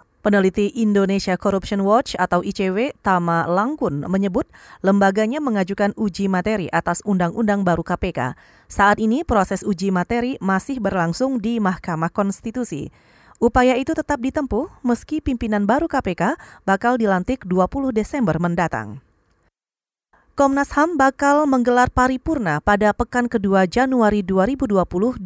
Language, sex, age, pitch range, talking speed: Indonesian, female, 30-49, 195-255 Hz, 120 wpm